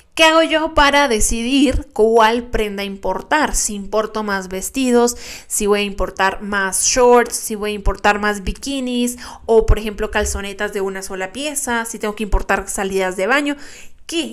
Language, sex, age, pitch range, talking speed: Spanish, female, 20-39, 200-245 Hz, 170 wpm